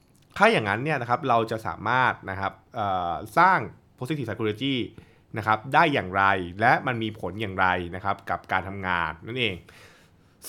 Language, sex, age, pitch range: Thai, male, 20-39, 105-130 Hz